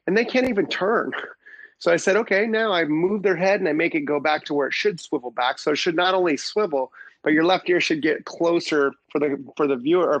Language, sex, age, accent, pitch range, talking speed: English, male, 30-49, American, 145-185 Hz, 260 wpm